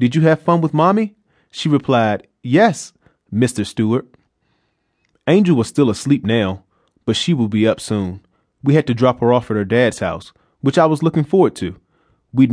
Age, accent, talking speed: 30-49, American, 185 wpm